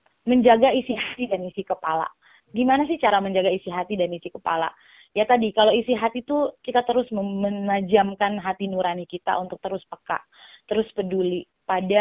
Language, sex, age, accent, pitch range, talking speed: Indonesian, female, 20-39, native, 180-230 Hz, 165 wpm